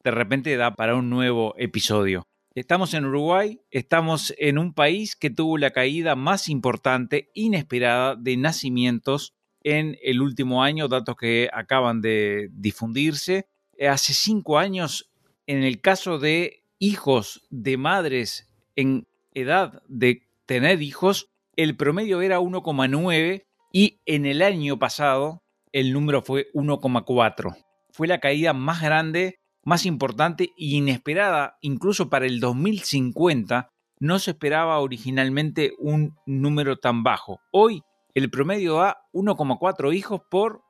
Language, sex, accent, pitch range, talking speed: Spanish, male, Argentinian, 130-180 Hz, 130 wpm